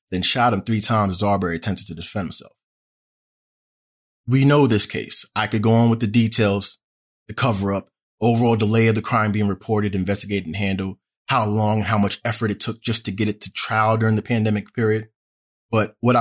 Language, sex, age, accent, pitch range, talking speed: English, male, 20-39, American, 100-130 Hz, 195 wpm